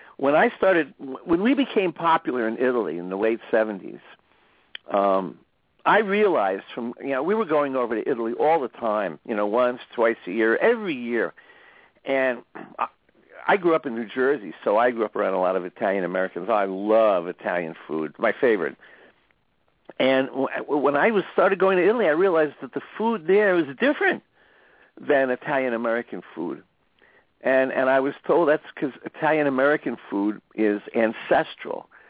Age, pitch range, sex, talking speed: 60-79, 115-165 Hz, male, 165 wpm